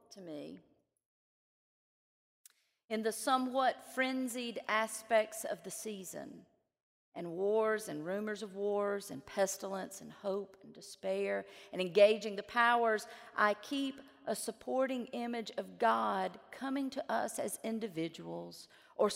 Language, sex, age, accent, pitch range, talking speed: English, female, 40-59, American, 215-275 Hz, 120 wpm